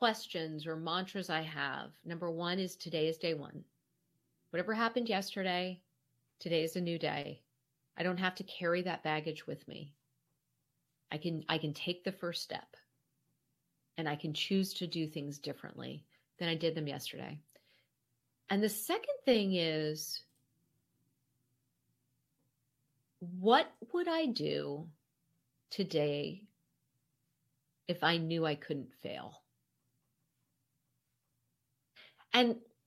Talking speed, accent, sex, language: 120 wpm, American, female, English